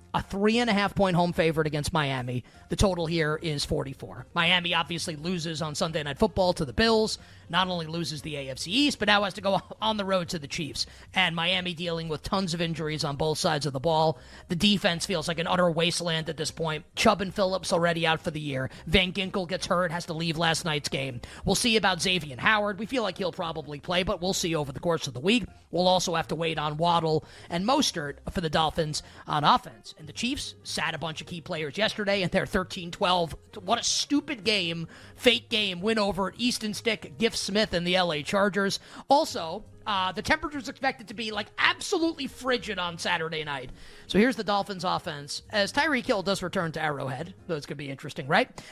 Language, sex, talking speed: English, male, 215 wpm